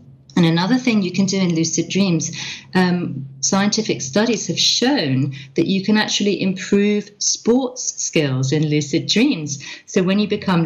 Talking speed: 160 wpm